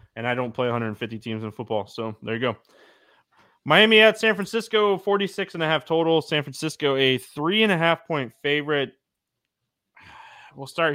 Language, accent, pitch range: English, American, 120-170 Hz